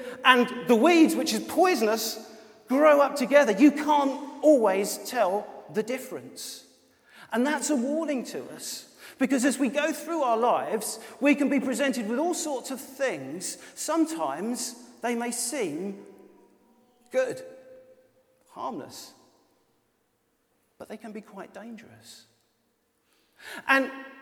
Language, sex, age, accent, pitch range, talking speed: English, male, 40-59, British, 205-280 Hz, 125 wpm